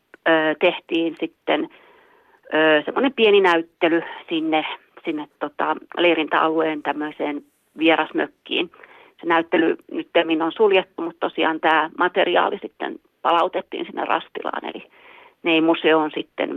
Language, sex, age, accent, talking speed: Finnish, female, 40-59, native, 105 wpm